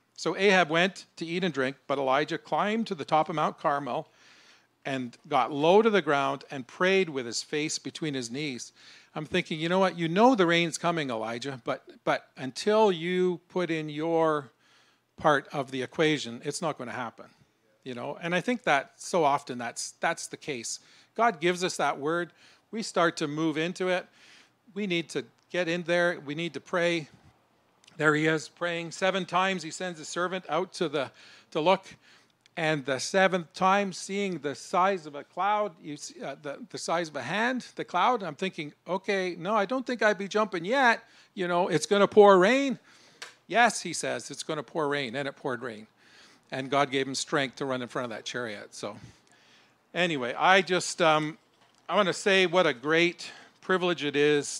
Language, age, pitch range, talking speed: English, 40-59, 145-185 Hz, 200 wpm